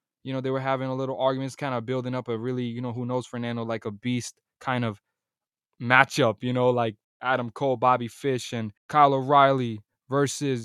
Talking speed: 205 wpm